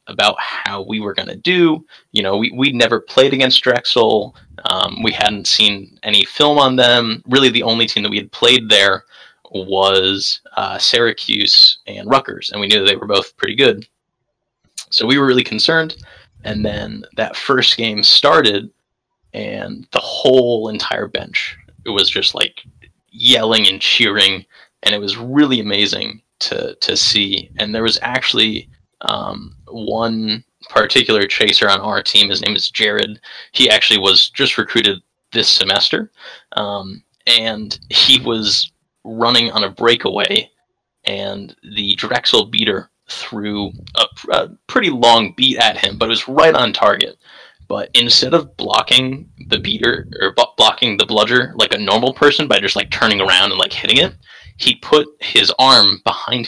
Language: English